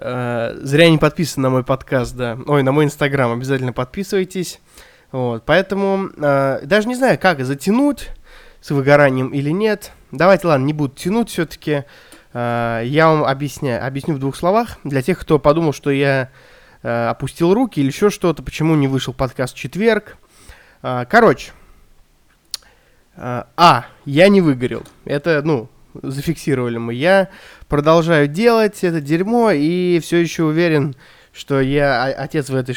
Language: Russian